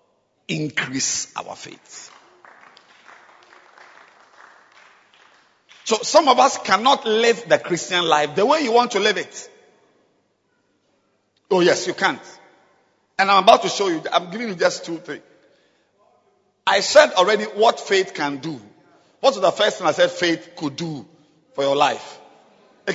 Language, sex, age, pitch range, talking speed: English, male, 50-69, 195-295 Hz, 145 wpm